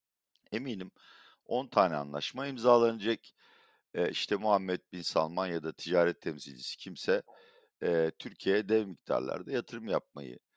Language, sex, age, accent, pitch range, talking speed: Turkish, male, 50-69, native, 90-140 Hz, 120 wpm